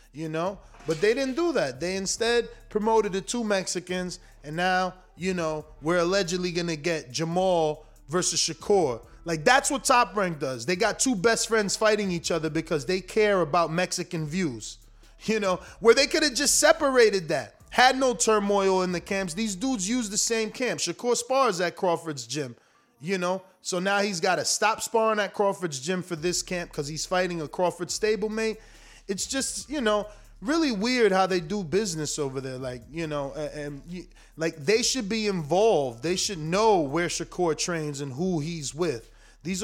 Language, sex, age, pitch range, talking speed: English, male, 20-39, 160-215 Hz, 190 wpm